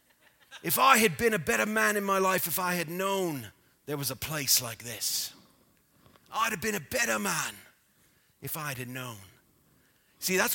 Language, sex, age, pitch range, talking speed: English, male, 40-59, 105-145 Hz, 180 wpm